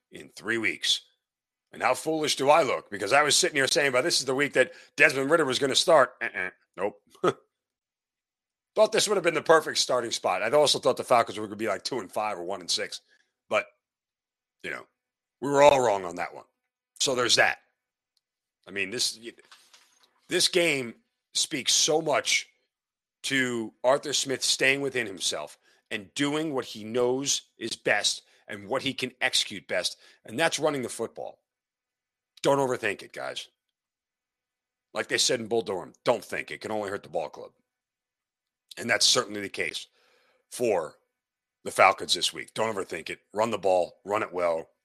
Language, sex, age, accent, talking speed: English, male, 40-59, American, 185 wpm